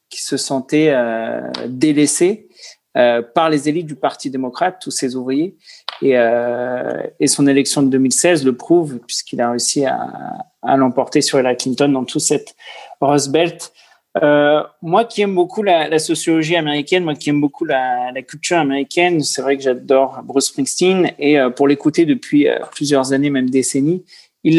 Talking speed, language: 175 wpm, French